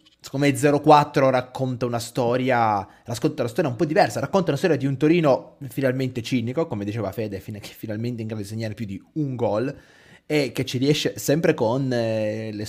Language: Italian